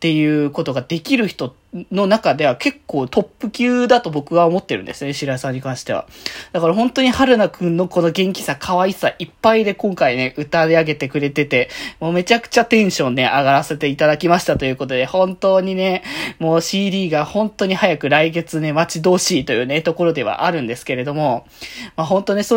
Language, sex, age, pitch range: Japanese, male, 20-39, 160-220 Hz